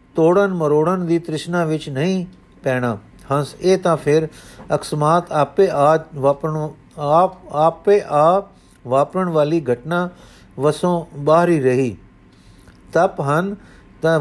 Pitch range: 145-175 Hz